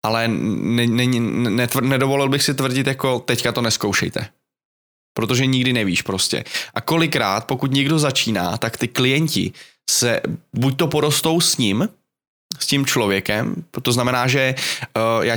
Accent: native